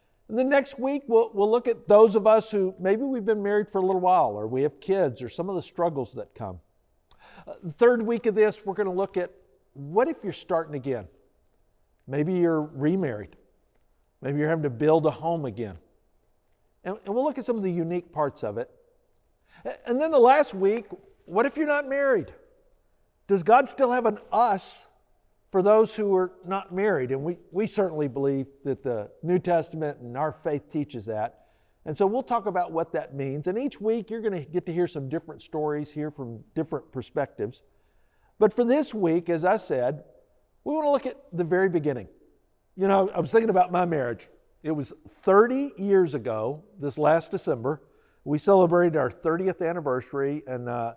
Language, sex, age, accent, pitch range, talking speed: English, male, 50-69, American, 145-215 Hz, 195 wpm